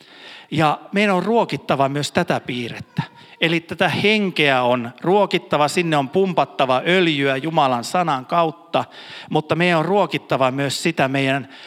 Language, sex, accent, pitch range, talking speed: Finnish, male, native, 130-180 Hz, 135 wpm